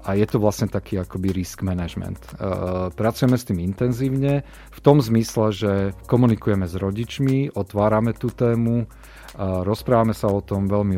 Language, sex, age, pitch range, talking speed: Slovak, male, 40-59, 90-105 Hz, 160 wpm